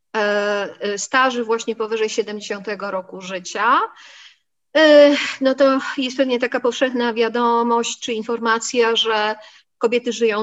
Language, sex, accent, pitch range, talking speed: Polish, female, native, 215-265 Hz, 105 wpm